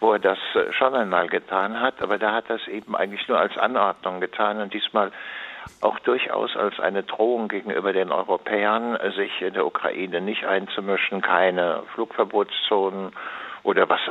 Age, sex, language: 60-79, male, German